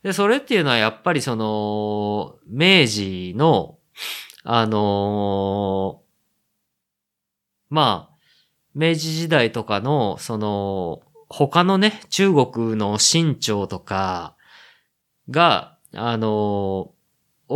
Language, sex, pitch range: Japanese, male, 110-155 Hz